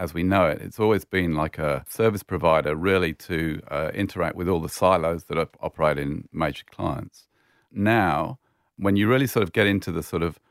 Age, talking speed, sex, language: 40-59, 200 wpm, male, English